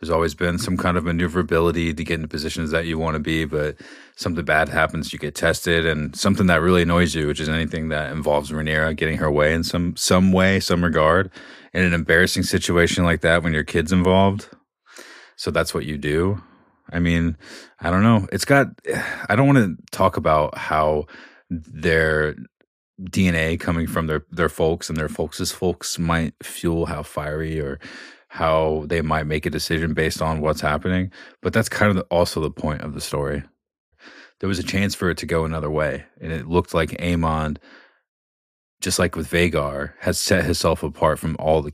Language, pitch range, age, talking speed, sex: English, 75-90 Hz, 30-49, 195 wpm, male